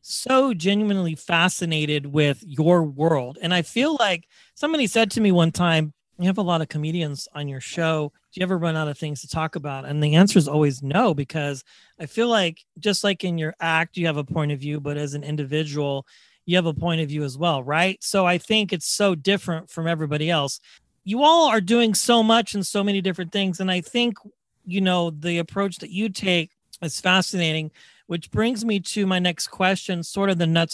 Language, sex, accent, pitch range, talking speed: English, male, American, 160-200 Hz, 220 wpm